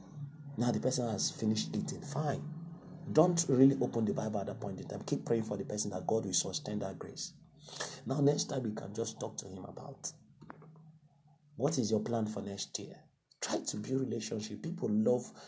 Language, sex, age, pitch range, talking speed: English, male, 40-59, 115-165 Hz, 200 wpm